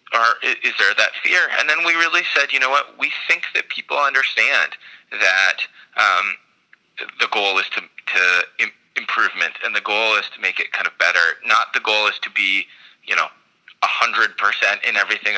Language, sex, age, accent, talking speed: English, male, 20-39, American, 190 wpm